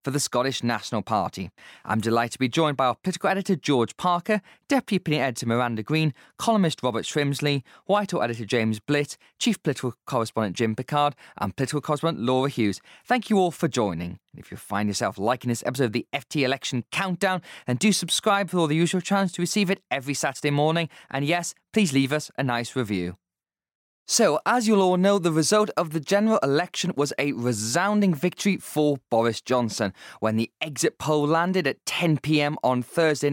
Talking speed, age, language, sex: 185 wpm, 20-39, English, male